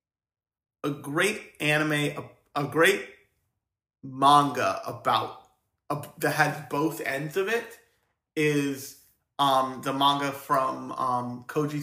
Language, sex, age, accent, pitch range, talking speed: English, male, 30-49, American, 125-155 Hz, 110 wpm